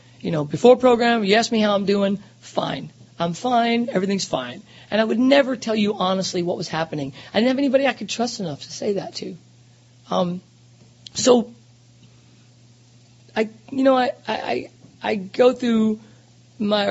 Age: 40-59